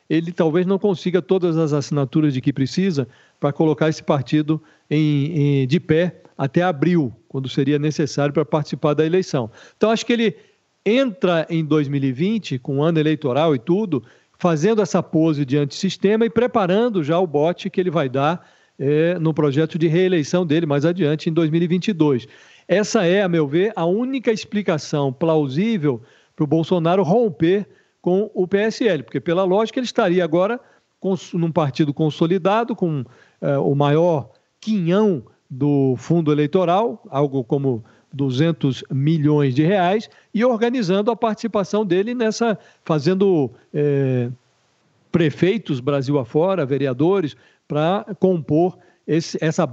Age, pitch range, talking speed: 50-69, 145-190 Hz, 140 wpm